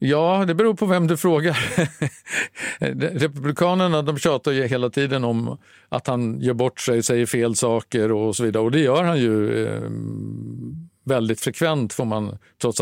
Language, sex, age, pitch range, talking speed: Swedish, male, 50-69, 110-135 Hz, 170 wpm